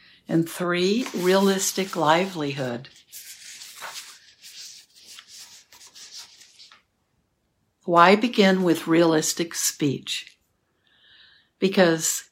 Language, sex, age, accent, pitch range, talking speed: English, female, 60-79, American, 160-195 Hz, 50 wpm